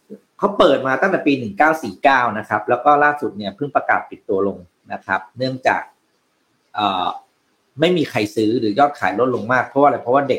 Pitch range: 110-160 Hz